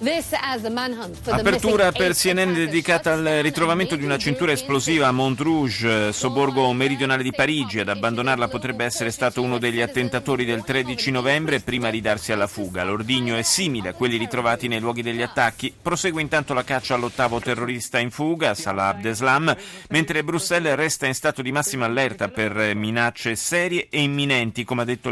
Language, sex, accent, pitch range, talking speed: Italian, male, native, 115-150 Hz, 160 wpm